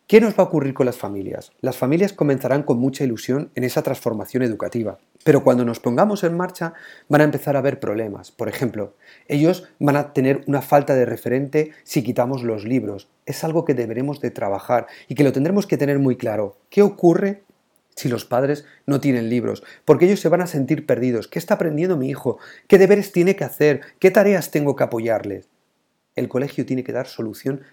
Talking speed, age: 205 wpm, 40-59